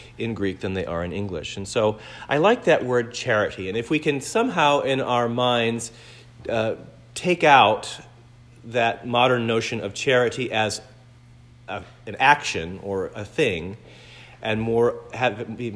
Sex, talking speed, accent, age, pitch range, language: male, 160 wpm, American, 40-59, 105-130 Hz, English